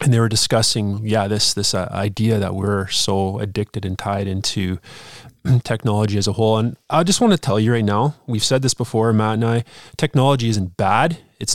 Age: 20-39